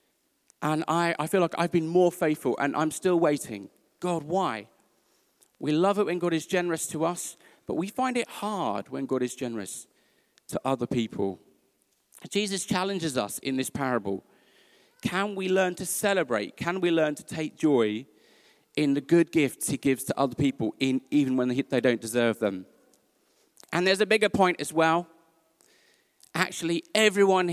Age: 40-59